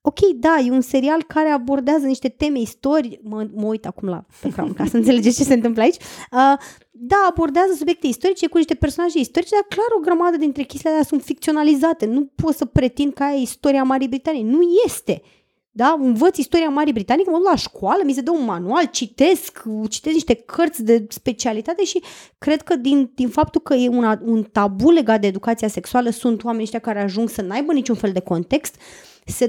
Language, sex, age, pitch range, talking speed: Romanian, female, 20-39, 230-310 Hz, 200 wpm